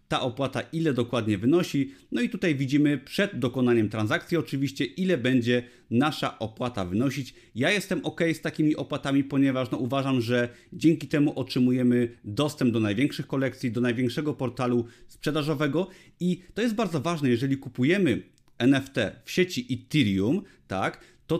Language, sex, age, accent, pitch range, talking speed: Polish, male, 30-49, native, 120-155 Hz, 140 wpm